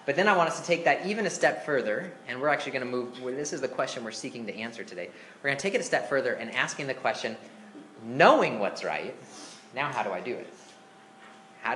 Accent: American